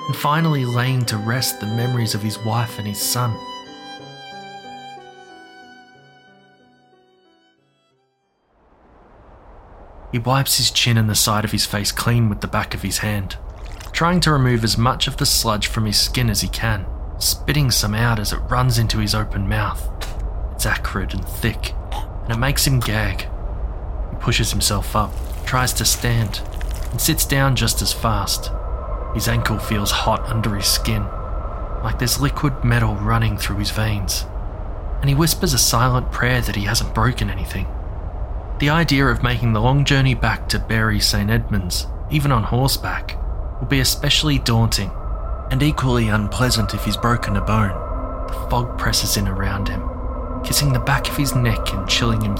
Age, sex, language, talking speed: 20-39, male, English, 165 wpm